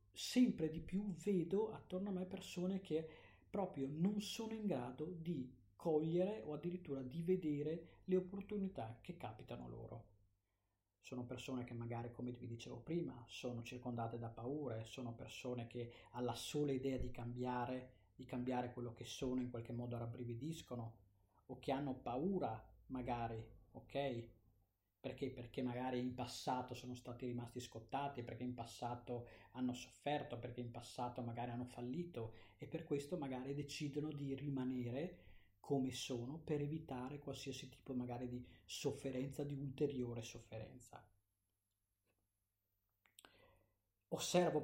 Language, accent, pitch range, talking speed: Italian, native, 115-145 Hz, 135 wpm